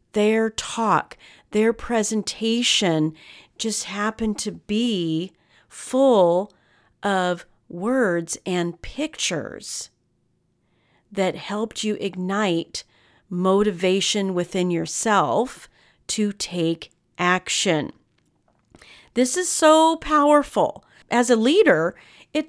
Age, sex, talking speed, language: 40-59, female, 85 wpm, English